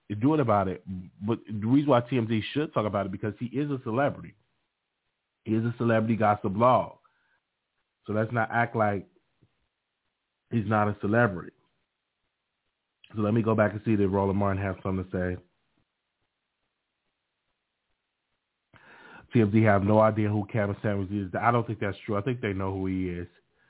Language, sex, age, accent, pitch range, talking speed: English, male, 30-49, American, 95-115 Hz, 170 wpm